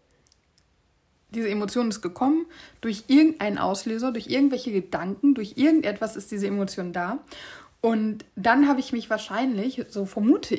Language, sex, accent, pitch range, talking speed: German, female, German, 195-250 Hz, 135 wpm